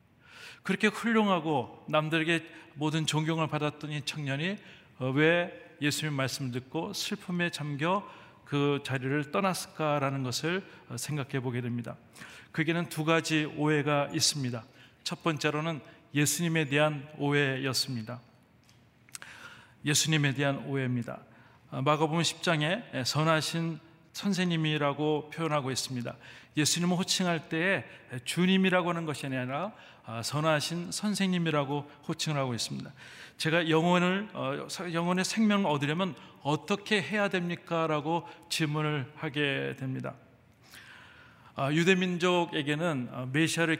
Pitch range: 140-170 Hz